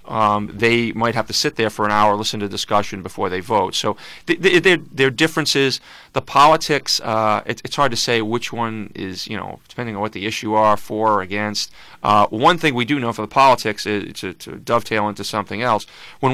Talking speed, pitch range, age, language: 210 wpm, 105-125 Hz, 30-49, English